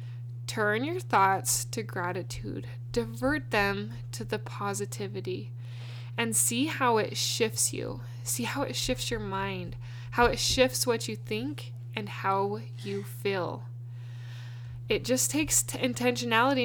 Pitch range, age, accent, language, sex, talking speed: 115-125 Hz, 20-39, American, English, female, 130 wpm